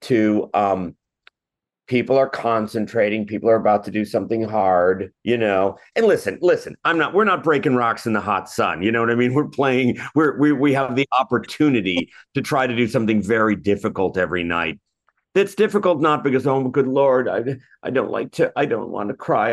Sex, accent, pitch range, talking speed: male, American, 105-125 Hz, 205 wpm